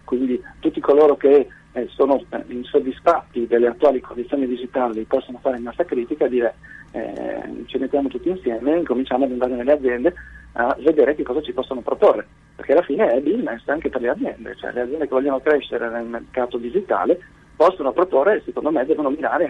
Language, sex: Italian, male